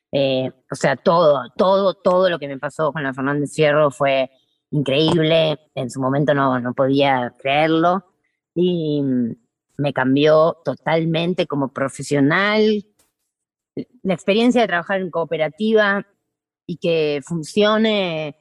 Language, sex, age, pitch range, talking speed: Spanish, female, 20-39, 145-180 Hz, 125 wpm